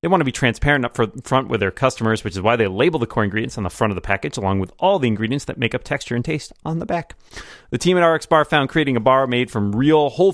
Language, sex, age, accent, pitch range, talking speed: English, male, 30-49, American, 105-155 Hz, 295 wpm